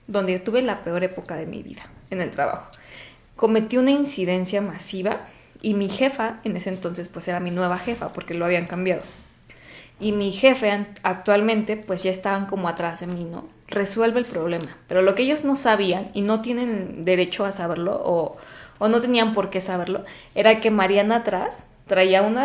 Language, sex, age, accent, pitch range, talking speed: Spanish, female, 20-39, Mexican, 185-230 Hz, 185 wpm